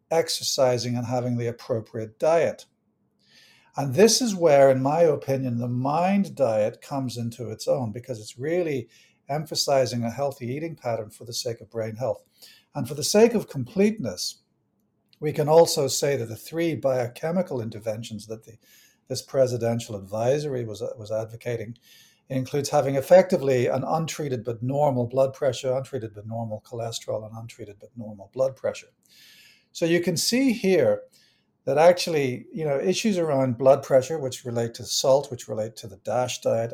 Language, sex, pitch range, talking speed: English, male, 115-160 Hz, 160 wpm